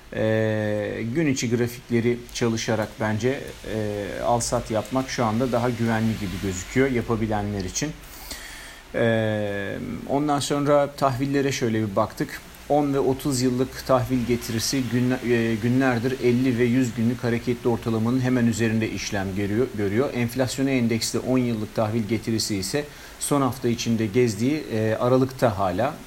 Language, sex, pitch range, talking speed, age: Turkish, male, 110-130 Hz, 120 wpm, 40-59